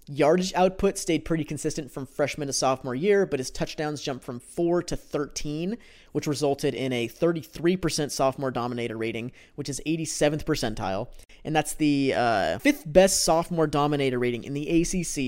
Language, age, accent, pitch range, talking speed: English, 30-49, American, 125-160 Hz, 165 wpm